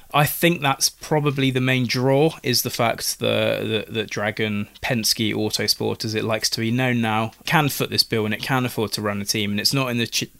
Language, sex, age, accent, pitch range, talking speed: English, male, 20-39, British, 110-130 Hz, 235 wpm